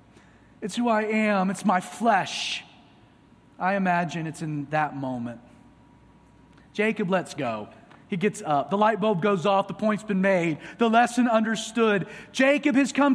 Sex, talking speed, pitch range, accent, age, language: male, 155 wpm, 185-270 Hz, American, 30-49, English